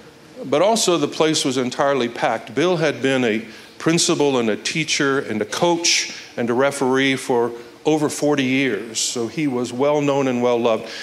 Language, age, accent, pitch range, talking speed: English, 50-69, American, 120-150 Hz, 170 wpm